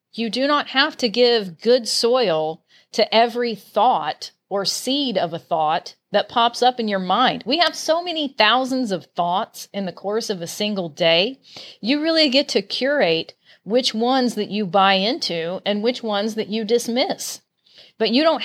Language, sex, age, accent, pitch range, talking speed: English, female, 40-59, American, 195-260 Hz, 180 wpm